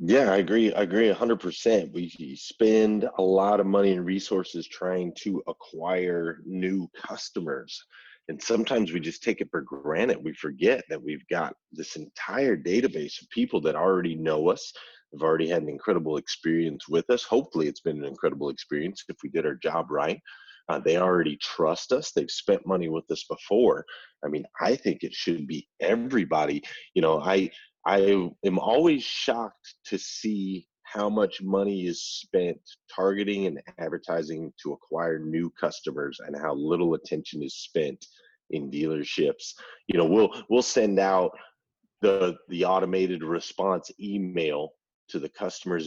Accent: American